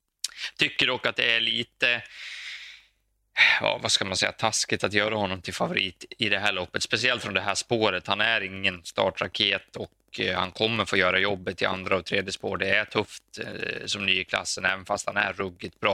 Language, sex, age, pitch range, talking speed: Swedish, male, 20-39, 95-110 Hz, 200 wpm